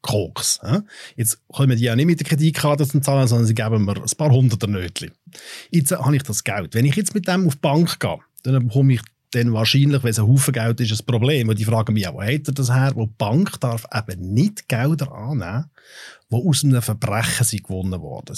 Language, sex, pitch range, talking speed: German, male, 115-160 Hz, 230 wpm